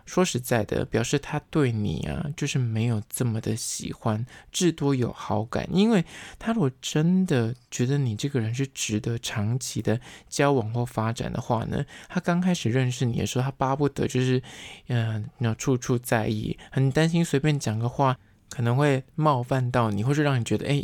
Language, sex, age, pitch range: Chinese, male, 20-39, 110-145 Hz